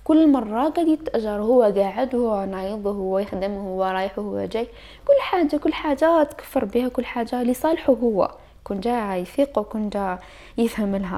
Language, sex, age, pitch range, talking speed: Arabic, female, 10-29, 205-285 Hz, 155 wpm